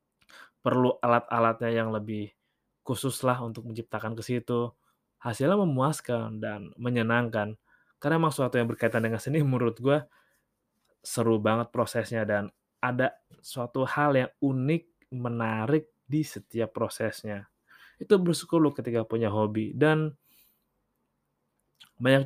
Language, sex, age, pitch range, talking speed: Indonesian, male, 20-39, 115-140 Hz, 115 wpm